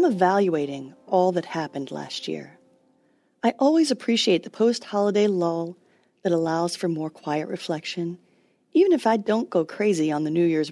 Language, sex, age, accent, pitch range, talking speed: English, female, 40-59, American, 165-230 Hz, 160 wpm